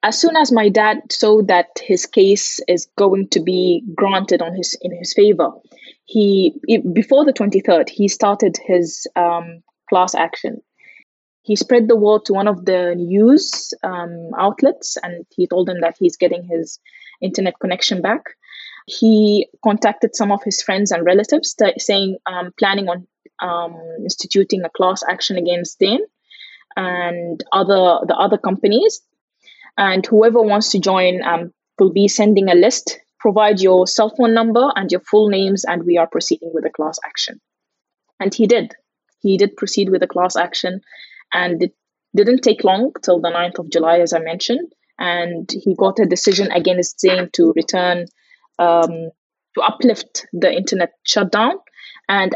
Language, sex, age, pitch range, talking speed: English, female, 20-39, 175-215 Hz, 165 wpm